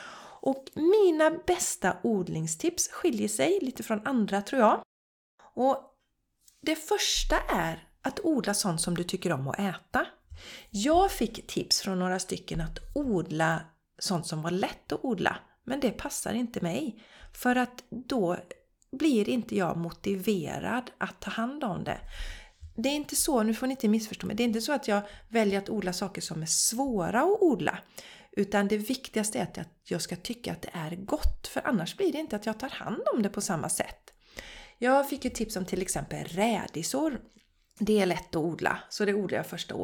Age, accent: 40-59, native